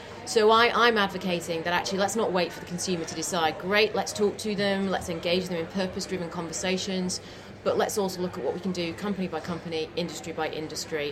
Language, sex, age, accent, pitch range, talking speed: English, female, 30-49, British, 160-195 Hz, 215 wpm